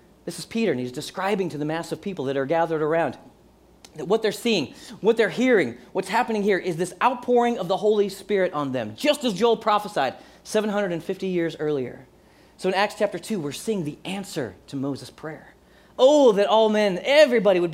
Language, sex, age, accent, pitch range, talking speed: English, male, 30-49, American, 175-225 Hz, 200 wpm